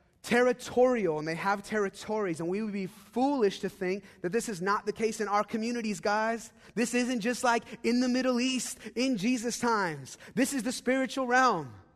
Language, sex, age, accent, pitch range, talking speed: English, male, 30-49, American, 165-230 Hz, 190 wpm